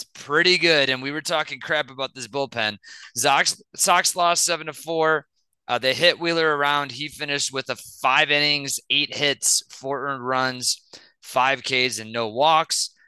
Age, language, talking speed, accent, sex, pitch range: 20-39, English, 165 wpm, American, male, 120-155 Hz